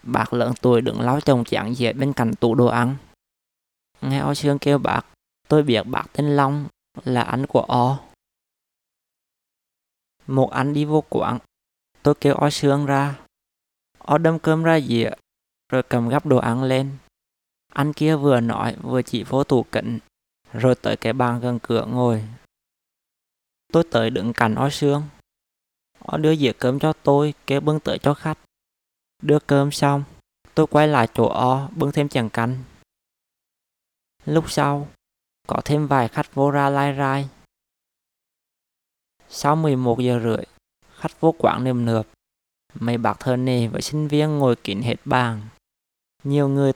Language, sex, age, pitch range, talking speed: Vietnamese, male, 20-39, 115-145 Hz, 160 wpm